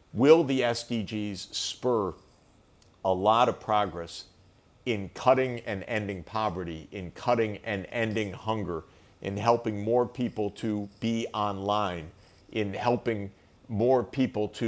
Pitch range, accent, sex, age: 95-120 Hz, American, male, 50-69